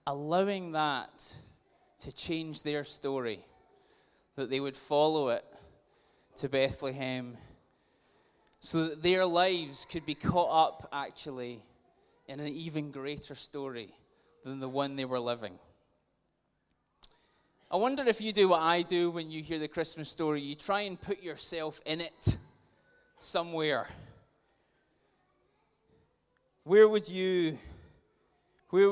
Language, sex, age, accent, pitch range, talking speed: English, male, 20-39, British, 145-195 Hz, 120 wpm